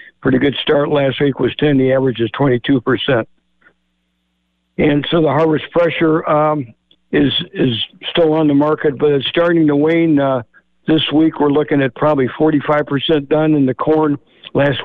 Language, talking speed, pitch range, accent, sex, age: English, 165 wpm, 125-150 Hz, American, male, 60-79